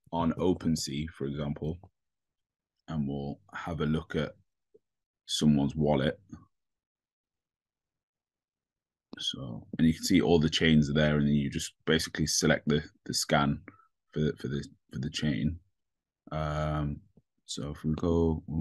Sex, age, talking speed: male, 20-39, 140 wpm